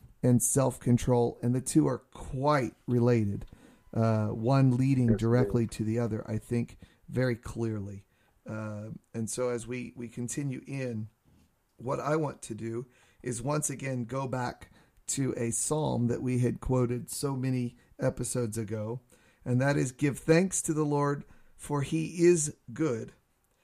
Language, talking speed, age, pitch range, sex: English, 150 wpm, 40-59, 115-135 Hz, male